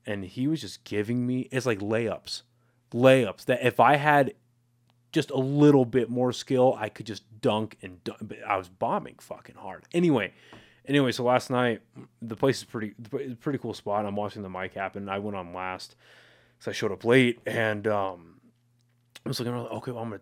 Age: 20-39